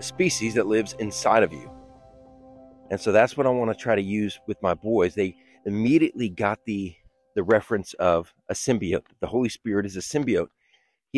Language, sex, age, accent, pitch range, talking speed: English, male, 40-59, American, 95-125 Hz, 190 wpm